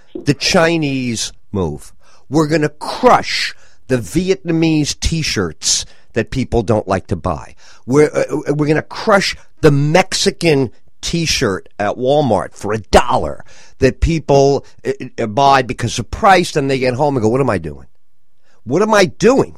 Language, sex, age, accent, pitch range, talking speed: English, male, 50-69, American, 110-175 Hz, 155 wpm